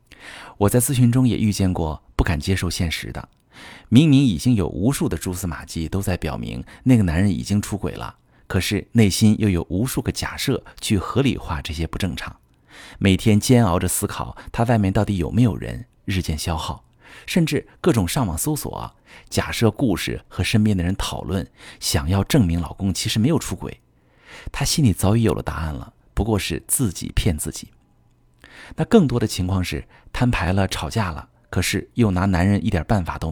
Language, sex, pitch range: Chinese, male, 85-115 Hz